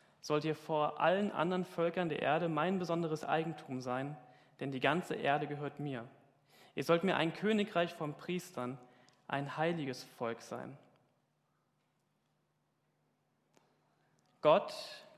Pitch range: 140-175 Hz